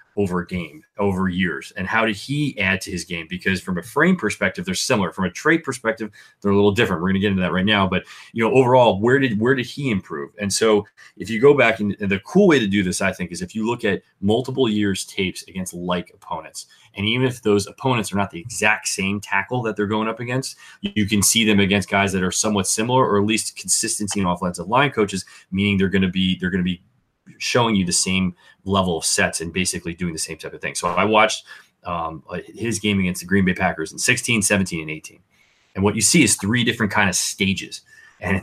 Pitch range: 90-110 Hz